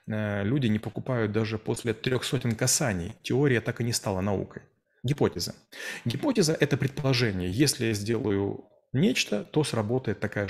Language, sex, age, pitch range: Russian, male, 30-49, 105-135 Hz